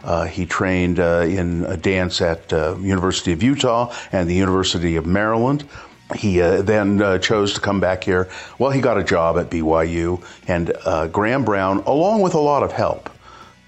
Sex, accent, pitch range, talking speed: male, American, 90-110 Hz, 195 wpm